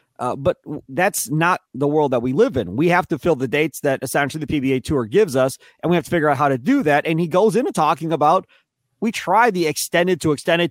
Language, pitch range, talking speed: English, 130-175 Hz, 250 wpm